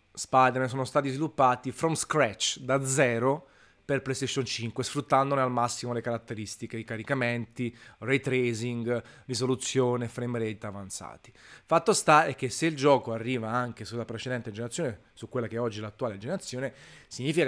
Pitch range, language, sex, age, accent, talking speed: 115-135 Hz, Italian, male, 30-49, native, 155 wpm